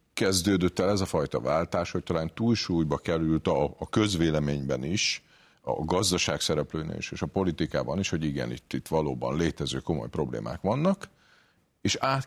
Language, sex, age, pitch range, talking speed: Hungarian, male, 50-69, 75-95 Hz, 160 wpm